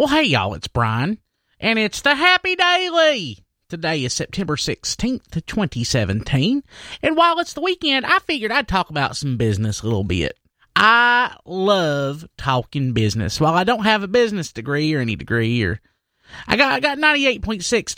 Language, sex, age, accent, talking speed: English, male, 30-49, American, 165 wpm